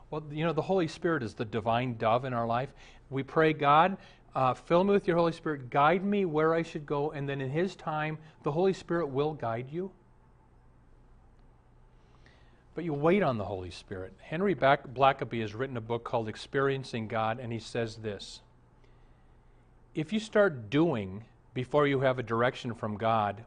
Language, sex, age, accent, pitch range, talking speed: English, male, 40-59, American, 120-165 Hz, 180 wpm